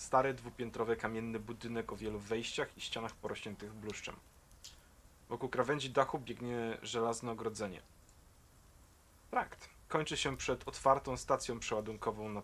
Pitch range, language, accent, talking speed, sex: 90-115 Hz, Polish, native, 120 wpm, male